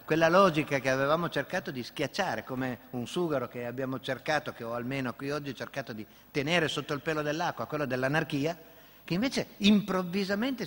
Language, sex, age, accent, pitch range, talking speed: Italian, male, 50-69, native, 115-175 Hz, 170 wpm